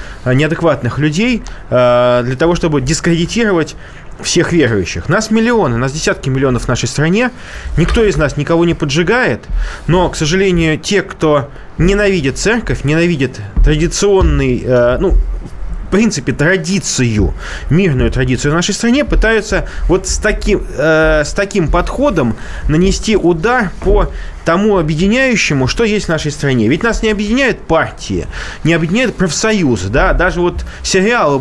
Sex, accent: male, native